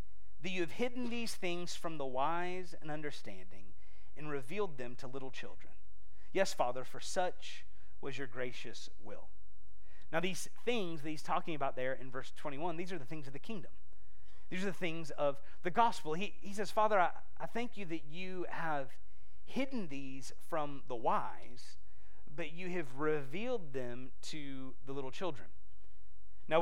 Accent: American